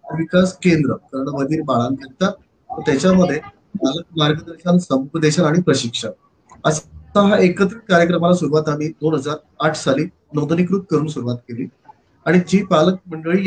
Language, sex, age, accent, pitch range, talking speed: Marathi, male, 30-49, native, 150-180 Hz, 110 wpm